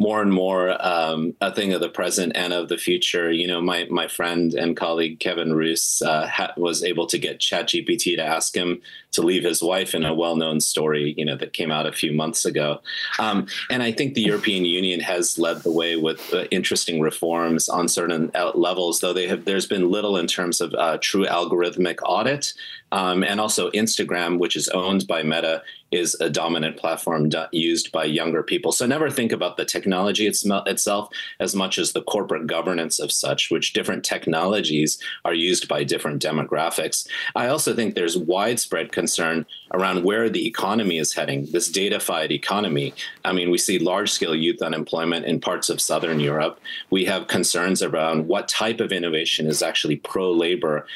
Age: 30-49